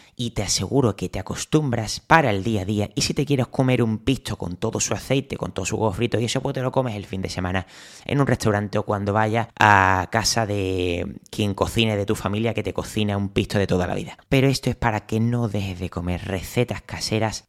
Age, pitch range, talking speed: 20-39, 95-120 Hz, 245 wpm